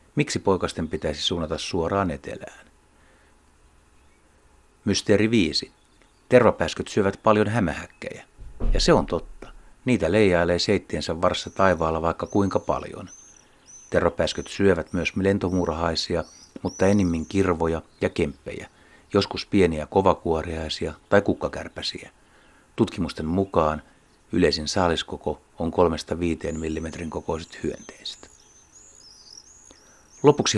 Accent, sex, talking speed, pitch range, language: native, male, 95 wpm, 80-100 Hz, Finnish